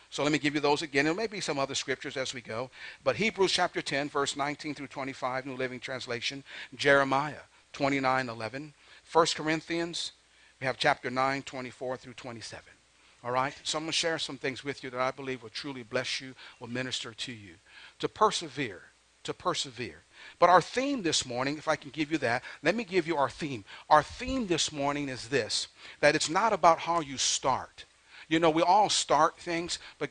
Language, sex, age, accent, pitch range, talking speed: English, male, 50-69, American, 135-170 Hz, 205 wpm